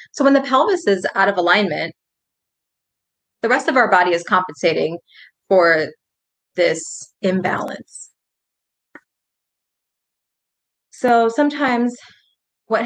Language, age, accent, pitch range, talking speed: English, 20-39, American, 185-215 Hz, 100 wpm